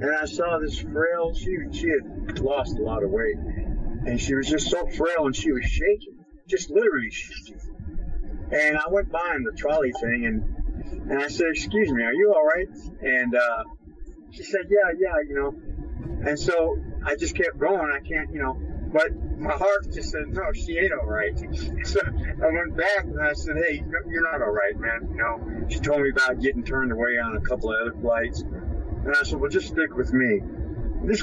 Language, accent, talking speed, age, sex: English, American, 210 wpm, 50-69, male